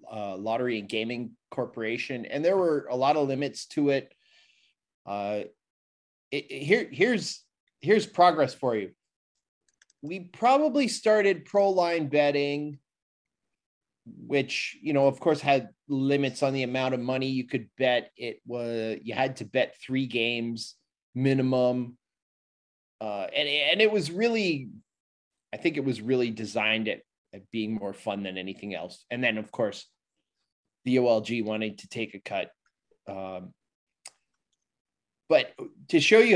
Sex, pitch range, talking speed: male, 115-140 Hz, 145 wpm